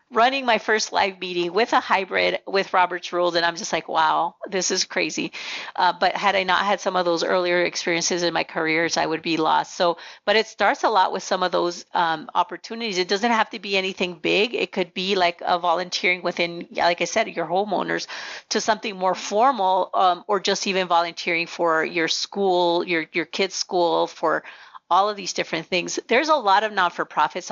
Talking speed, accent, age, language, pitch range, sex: 205 wpm, American, 40-59, English, 170-205 Hz, female